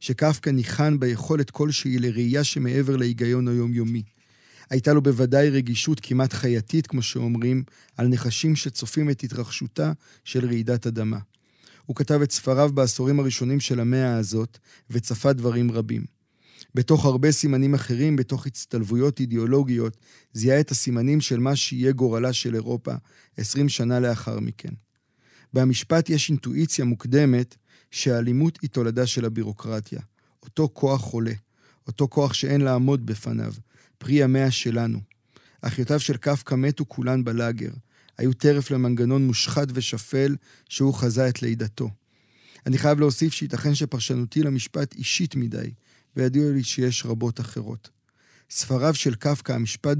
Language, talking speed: Hebrew, 130 wpm